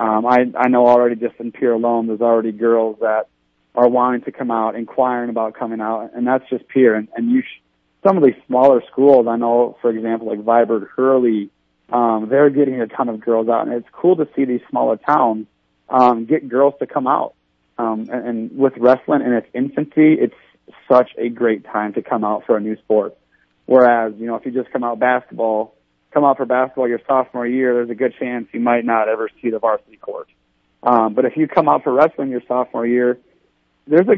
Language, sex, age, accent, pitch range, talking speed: English, male, 40-59, American, 115-135 Hz, 220 wpm